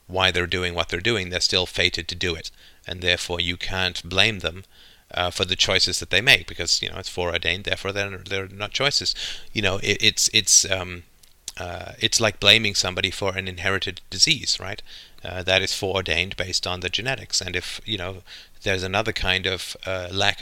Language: English